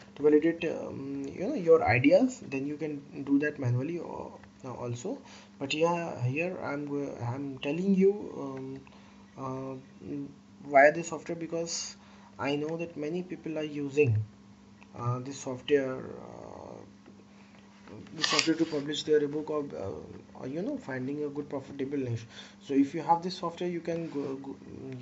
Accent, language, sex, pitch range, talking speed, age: Indian, English, male, 135-170 Hz, 155 wpm, 20-39